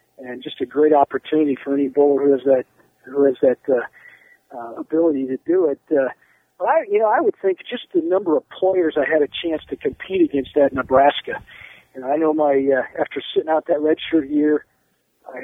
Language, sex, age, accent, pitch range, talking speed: English, male, 50-69, American, 135-175 Hz, 210 wpm